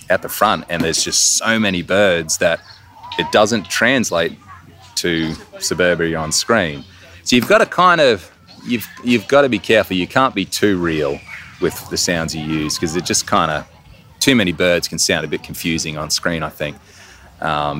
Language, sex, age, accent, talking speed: English, male, 30-49, Australian, 190 wpm